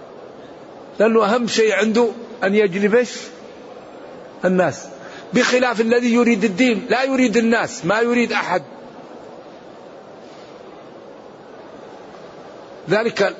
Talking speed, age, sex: 80 wpm, 50-69, male